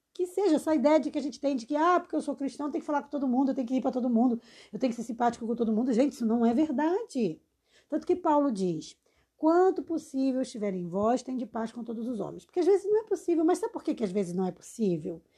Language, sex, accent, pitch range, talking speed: Portuguese, female, Brazilian, 230-310 Hz, 295 wpm